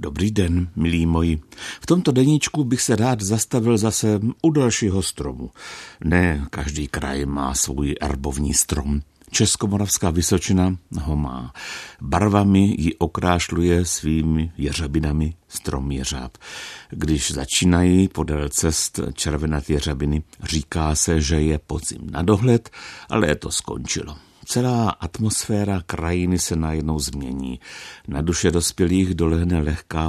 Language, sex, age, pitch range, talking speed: Czech, male, 60-79, 75-95 Hz, 120 wpm